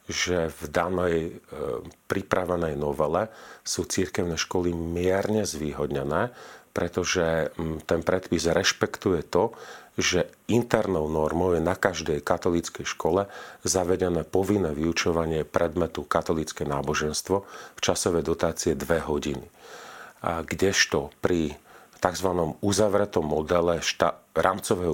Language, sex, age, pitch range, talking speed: Slovak, male, 40-59, 80-90 Hz, 100 wpm